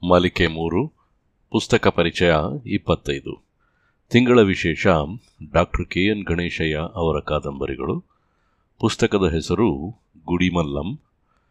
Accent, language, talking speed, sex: native, Kannada, 80 wpm, male